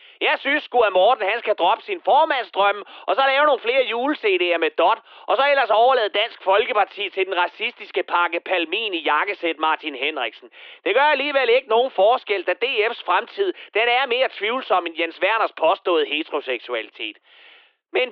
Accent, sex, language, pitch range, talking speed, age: native, male, Danish, 200-325 Hz, 170 wpm, 30-49